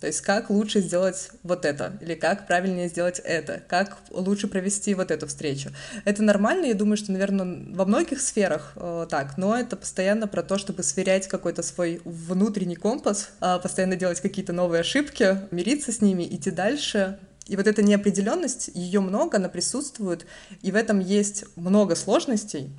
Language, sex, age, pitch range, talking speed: Russian, female, 20-39, 175-215 Hz, 165 wpm